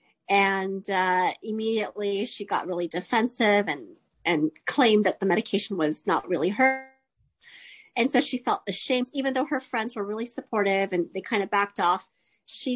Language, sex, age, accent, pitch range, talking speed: English, female, 30-49, American, 200-260 Hz, 170 wpm